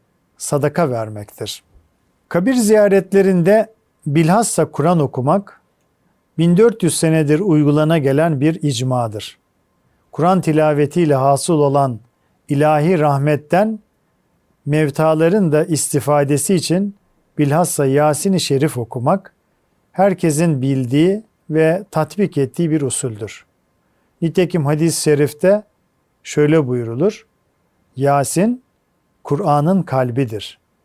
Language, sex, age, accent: Turkish, male, 40-59, native